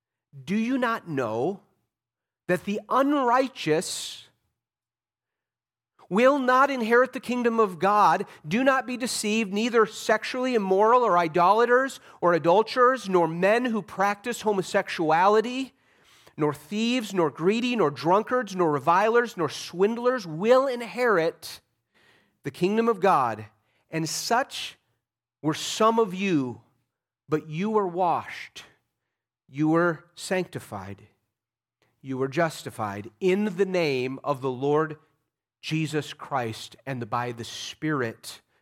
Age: 40-59